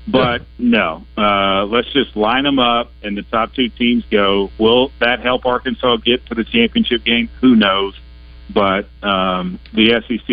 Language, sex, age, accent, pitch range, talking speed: English, male, 50-69, American, 95-120 Hz, 170 wpm